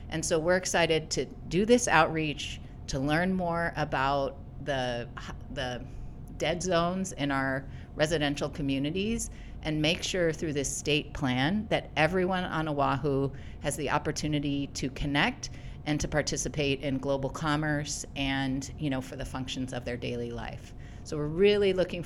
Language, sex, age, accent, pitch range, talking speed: English, female, 40-59, American, 135-160 Hz, 150 wpm